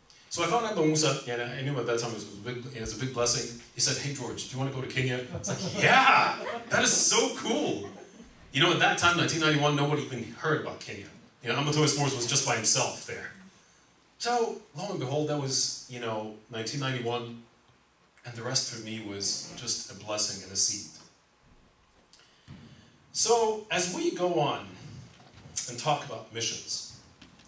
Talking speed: 200 wpm